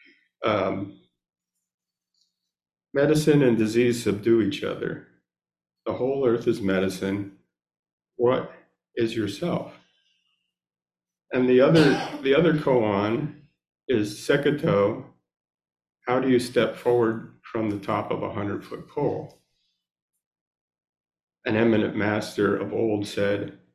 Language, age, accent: English, 50-69, American